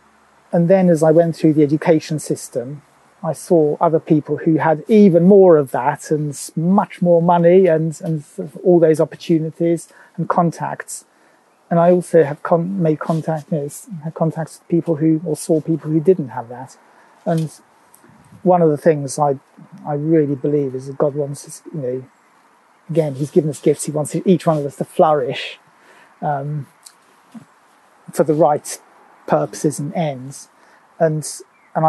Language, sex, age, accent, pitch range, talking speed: English, male, 30-49, British, 145-165 Hz, 165 wpm